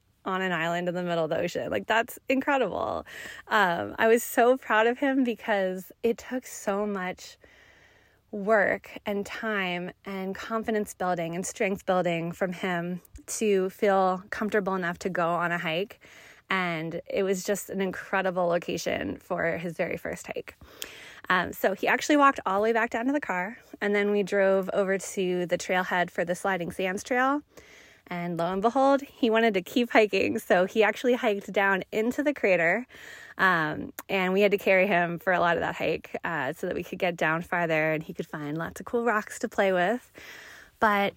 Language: English